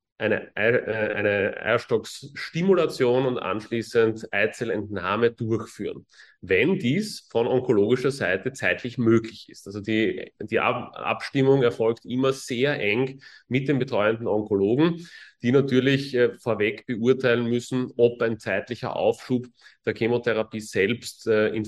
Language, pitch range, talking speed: German, 105-130 Hz, 115 wpm